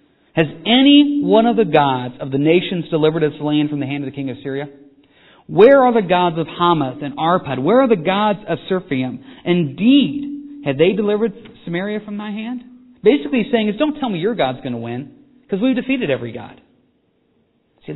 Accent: American